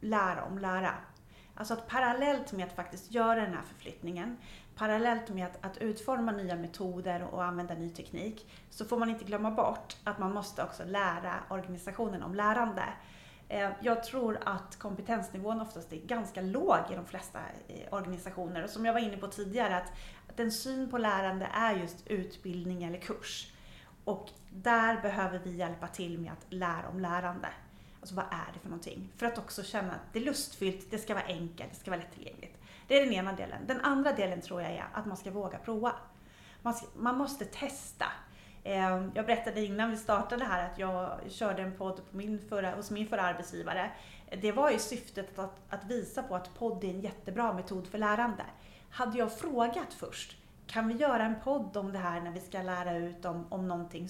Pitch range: 180-230 Hz